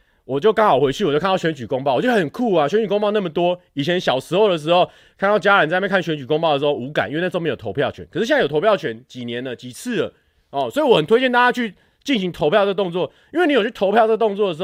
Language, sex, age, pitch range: Chinese, male, 30-49, 150-225 Hz